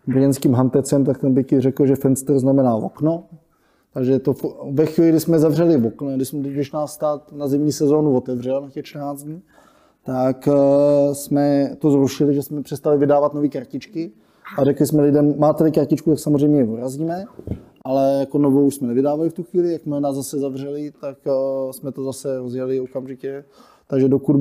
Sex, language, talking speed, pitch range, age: male, Czech, 180 wpm, 130-145 Hz, 20-39